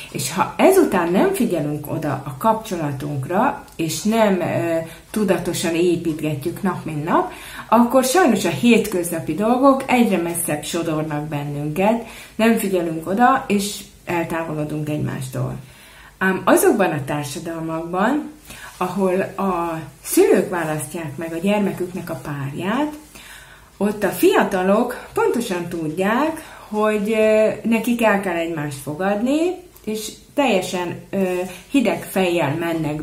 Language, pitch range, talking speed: Hungarian, 165-225 Hz, 110 wpm